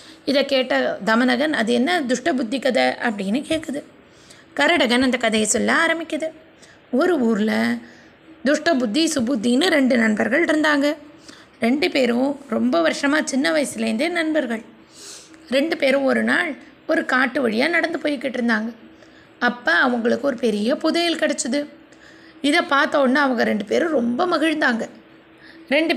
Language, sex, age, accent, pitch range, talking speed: Tamil, female, 20-39, native, 250-310 Hz, 125 wpm